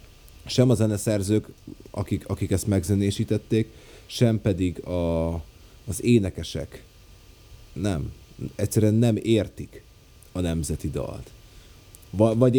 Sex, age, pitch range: male, 30-49, 85-110 Hz